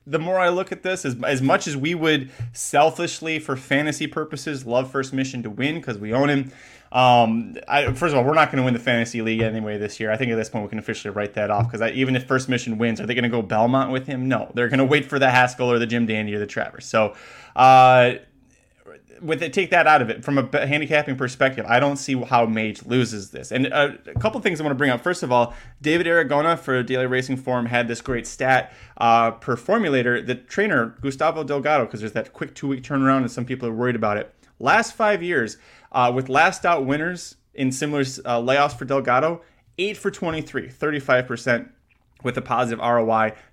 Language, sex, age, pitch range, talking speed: English, male, 20-39, 120-150 Hz, 230 wpm